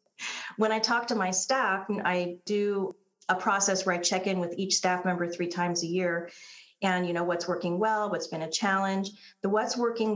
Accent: American